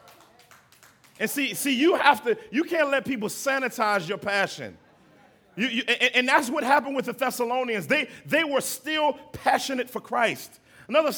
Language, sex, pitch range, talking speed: English, male, 195-255 Hz, 160 wpm